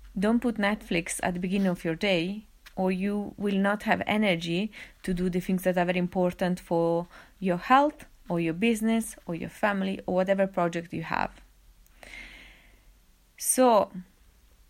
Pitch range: 180-220 Hz